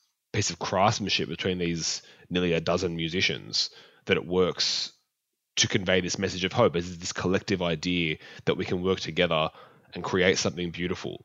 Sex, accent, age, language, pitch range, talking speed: male, Australian, 20-39, English, 90-115 Hz, 165 wpm